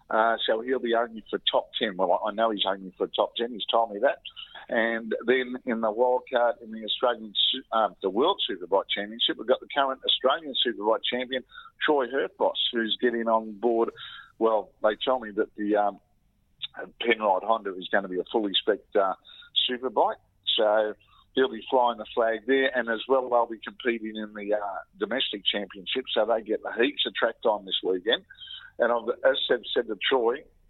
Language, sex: English, male